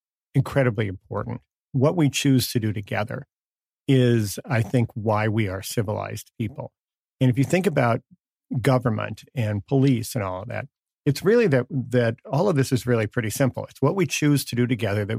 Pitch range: 110-135 Hz